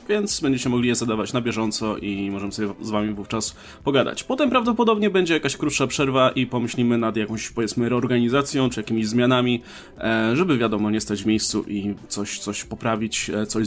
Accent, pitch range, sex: native, 115-145 Hz, male